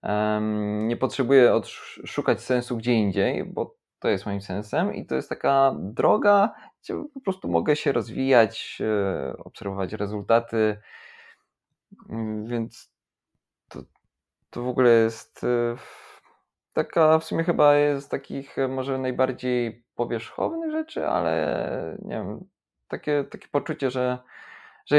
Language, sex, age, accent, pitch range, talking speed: Polish, male, 20-39, native, 105-135 Hz, 120 wpm